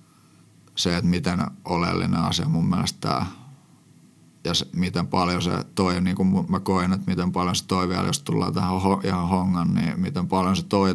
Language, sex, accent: Finnish, male, native